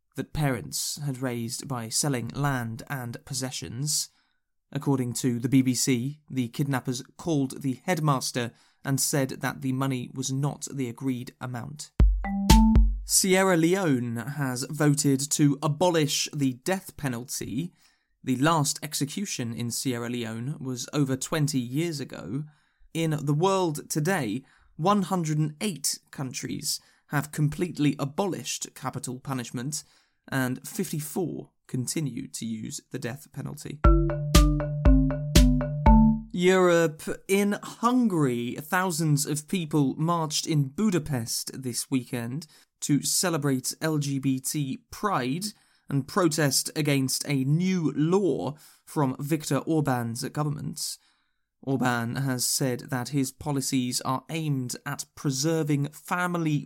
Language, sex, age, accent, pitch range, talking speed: English, male, 20-39, British, 130-160 Hz, 110 wpm